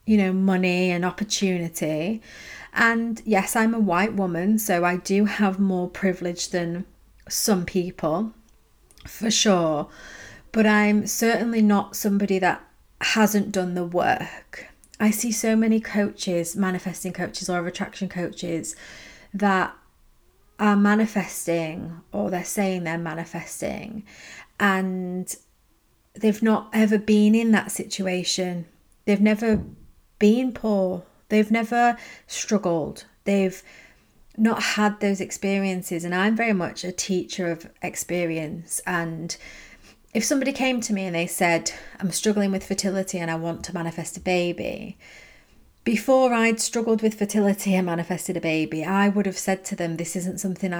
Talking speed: 135 wpm